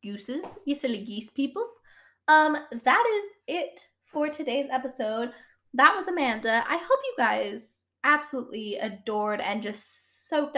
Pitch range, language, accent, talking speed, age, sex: 215-275 Hz, English, American, 135 wpm, 10-29, female